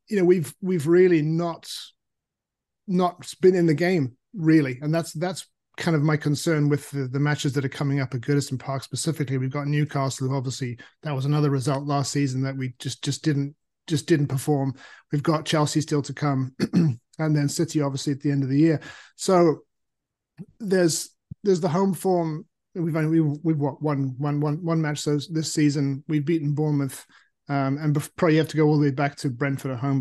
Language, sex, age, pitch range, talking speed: English, male, 30-49, 135-160 Hz, 205 wpm